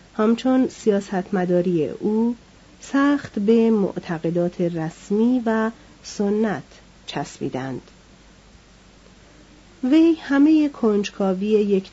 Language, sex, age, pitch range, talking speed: Persian, female, 40-59, 180-230 Hz, 70 wpm